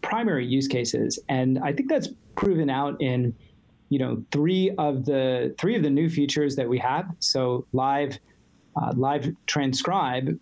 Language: English